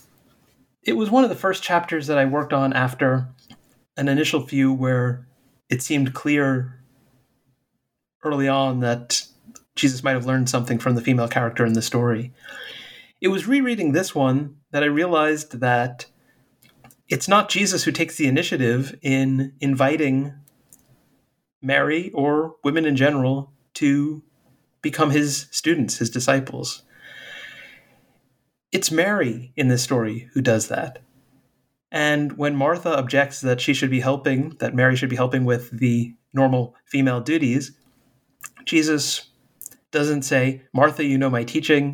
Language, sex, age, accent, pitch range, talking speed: English, male, 30-49, American, 130-150 Hz, 140 wpm